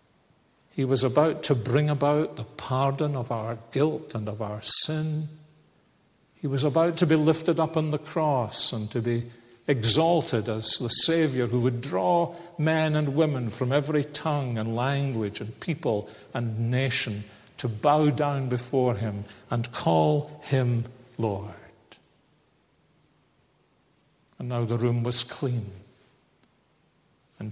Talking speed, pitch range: 135 wpm, 115-145 Hz